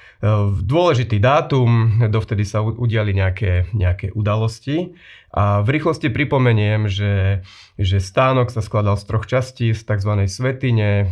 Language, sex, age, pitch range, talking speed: Slovak, male, 30-49, 100-125 Hz, 125 wpm